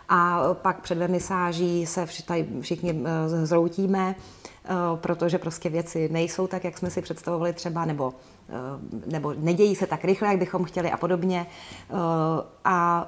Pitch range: 165-185 Hz